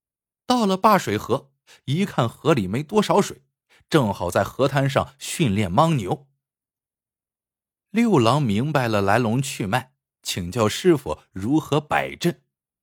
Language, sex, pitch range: Chinese, male, 110-175 Hz